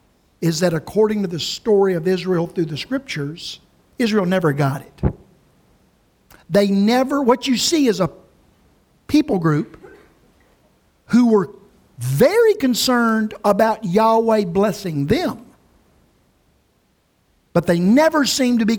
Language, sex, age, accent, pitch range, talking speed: English, male, 50-69, American, 185-265 Hz, 120 wpm